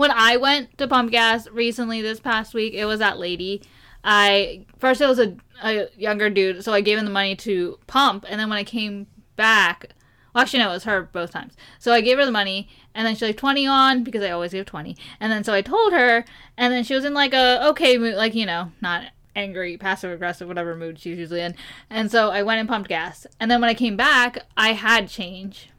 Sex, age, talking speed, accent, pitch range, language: female, 10-29, 240 wpm, American, 200-255 Hz, English